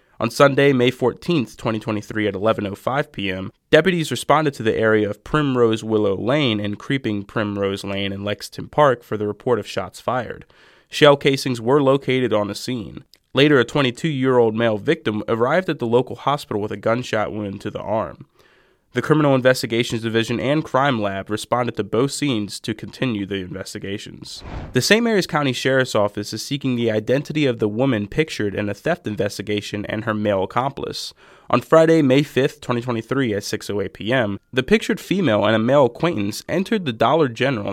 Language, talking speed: English, 175 wpm